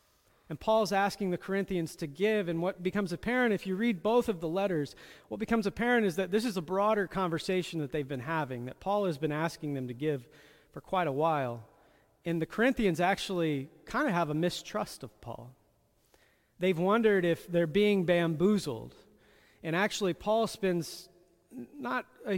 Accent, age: American, 40-59